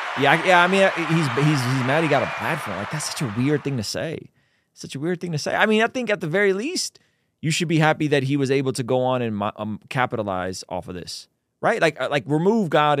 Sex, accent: male, American